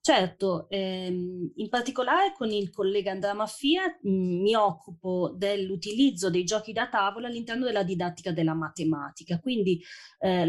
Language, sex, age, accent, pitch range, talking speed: Italian, female, 30-49, native, 175-225 Hz, 130 wpm